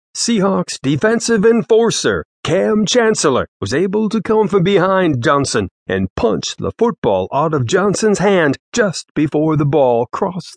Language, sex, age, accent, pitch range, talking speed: English, male, 50-69, American, 135-205 Hz, 140 wpm